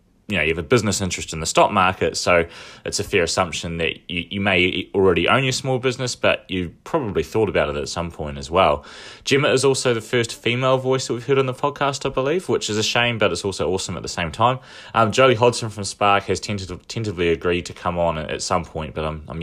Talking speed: 245 wpm